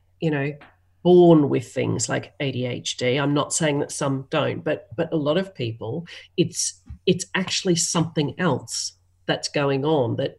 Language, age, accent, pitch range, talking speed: English, 40-59, Australian, 135-170 Hz, 160 wpm